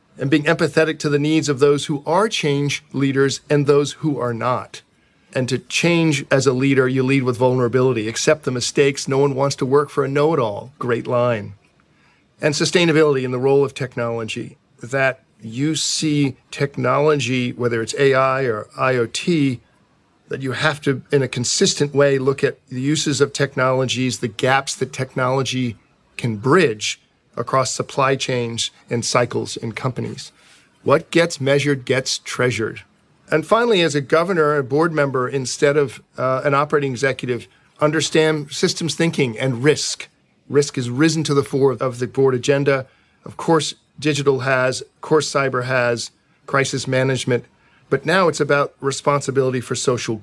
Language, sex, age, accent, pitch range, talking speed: English, male, 40-59, American, 130-150 Hz, 160 wpm